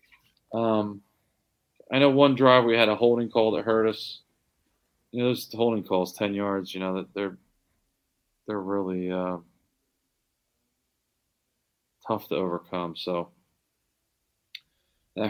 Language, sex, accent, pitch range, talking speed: English, male, American, 95-110 Hz, 125 wpm